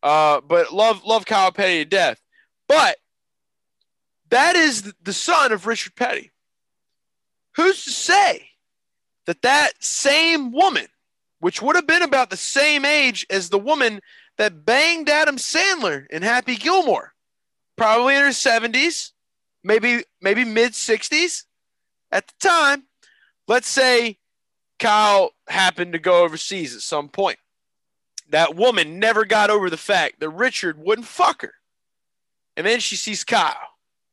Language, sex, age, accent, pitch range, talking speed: English, male, 20-39, American, 195-275 Hz, 135 wpm